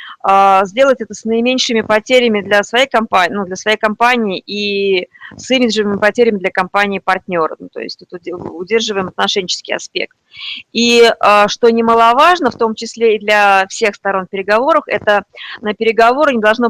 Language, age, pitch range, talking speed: Russian, 20-39, 190-230 Hz, 135 wpm